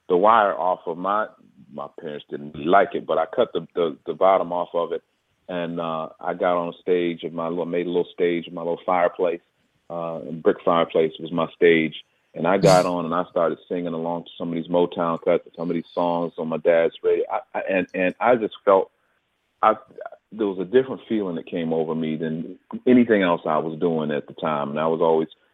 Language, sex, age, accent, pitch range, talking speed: English, male, 30-49, American, 80-95 Hz, 230 wpm